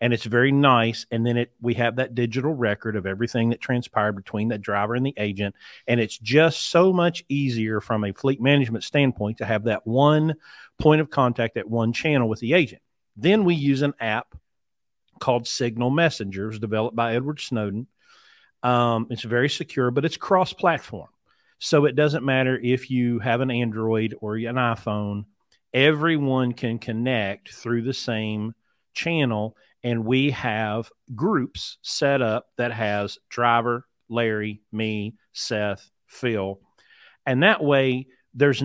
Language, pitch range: English, 110-140 Hz